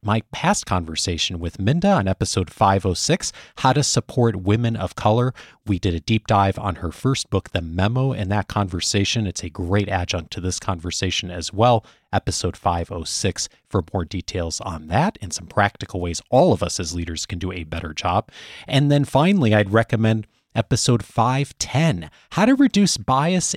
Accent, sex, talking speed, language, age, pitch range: American, male, 175 wpm, English, 30-49, 95-125 Hz